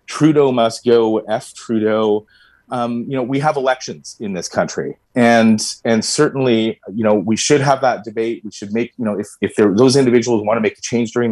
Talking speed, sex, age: 210 wpm, male, 30-49